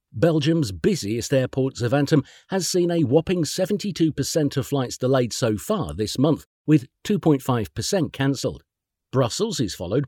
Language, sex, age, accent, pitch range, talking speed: Italian, male, 50-69, British, 110-155 Hz, 130 wpm